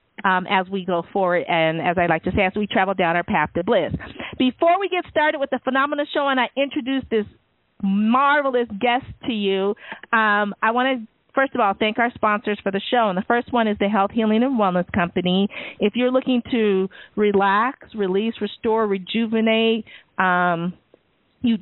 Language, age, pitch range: English, 40-59, 185-220 Hz